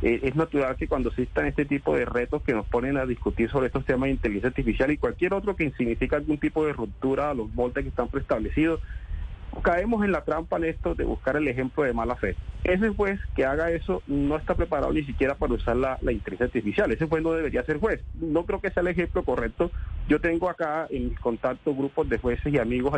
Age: 40-59